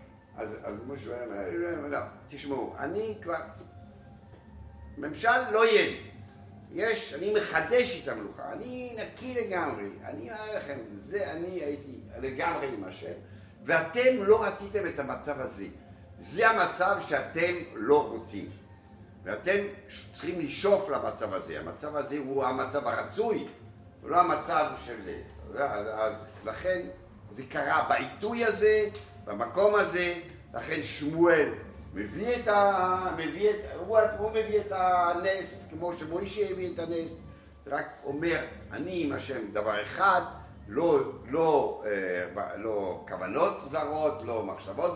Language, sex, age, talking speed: Hebrew, male, 60-79, 125 wpm